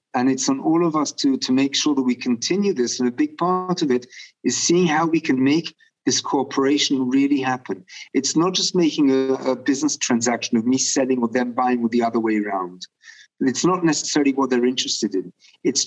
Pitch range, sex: 120-195 Hz, male